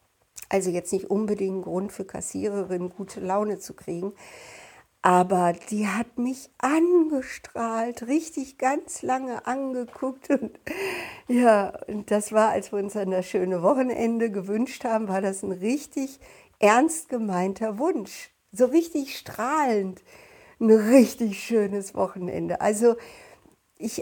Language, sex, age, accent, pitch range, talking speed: German, female, 60-79, German, 185-245 Hz, 125 wpm